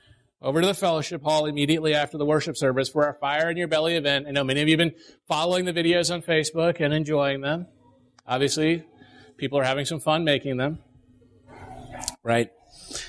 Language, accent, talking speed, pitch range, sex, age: English, American, 190 wpm, 140-185 Hz, male, 40-59